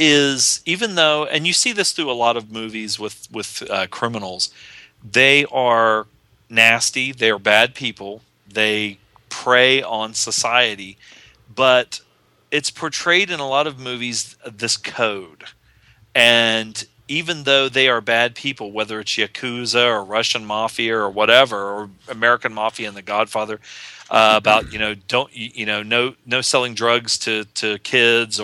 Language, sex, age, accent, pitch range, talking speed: English, male, 40-59, American, 110-140 Hz, 150 wpm